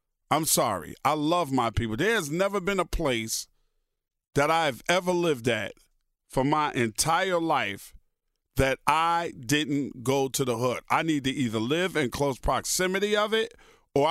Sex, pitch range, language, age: male, 135-195 Hz, English, 50-69